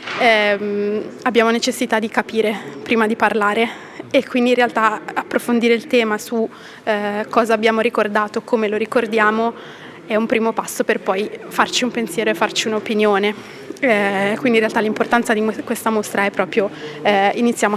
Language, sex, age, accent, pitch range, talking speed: Italian, female, 20-39, native, 210-235 Hz, 160 wpm